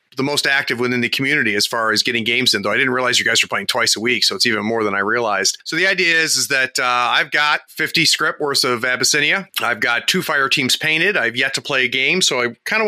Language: English